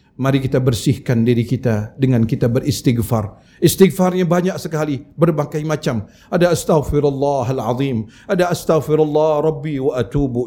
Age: 50-69